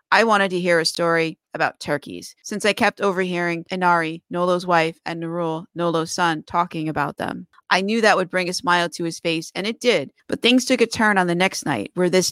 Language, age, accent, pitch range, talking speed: English, 30-49, American, 165-195 Hz, 225 wpm